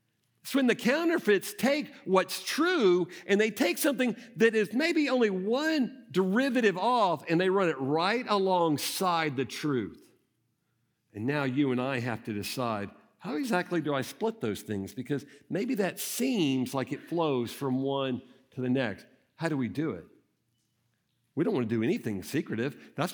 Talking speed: 170 wpm